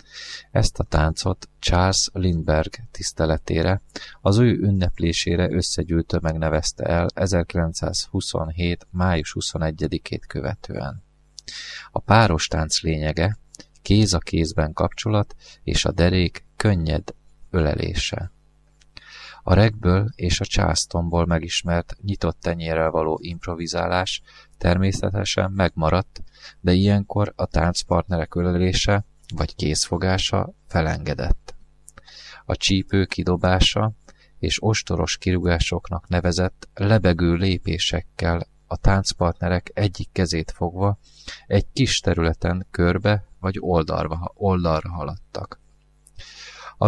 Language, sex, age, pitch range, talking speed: Hungarian, male, 30-49, 80-100 Hz, 90 wpm